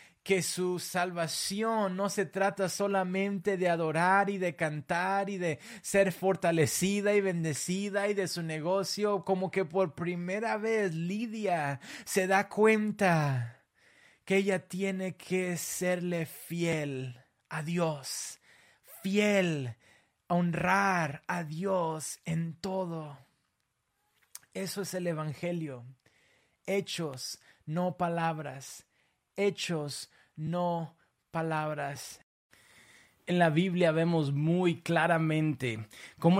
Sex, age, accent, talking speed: male, 30-49, Mexican, 105 wpm